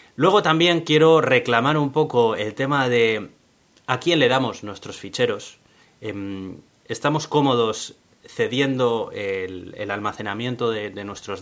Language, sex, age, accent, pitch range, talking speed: Spanish, male, 30-49, Spanish, 105-135 Hz, 115 wpm